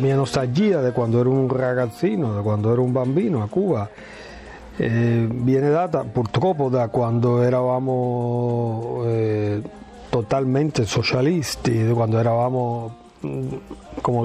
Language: Italian